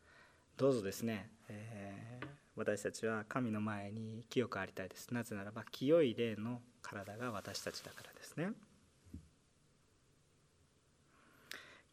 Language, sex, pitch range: Japanese, male, 100-155 Hz